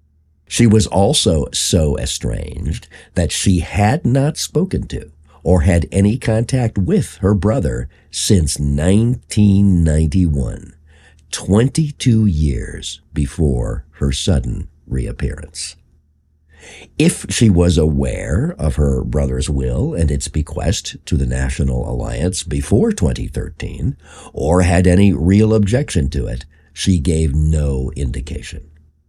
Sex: male